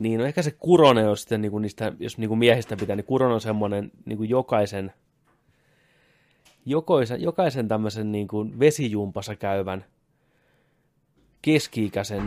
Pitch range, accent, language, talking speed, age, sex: 95-130 Hz, native, Finnish, 145 wpm, 30-49, male